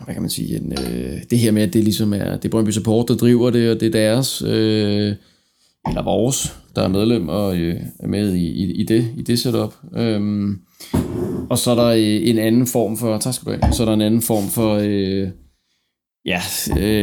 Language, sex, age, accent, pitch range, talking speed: Danish, male, 20-39, native, 105-120 Hz, 180 wpm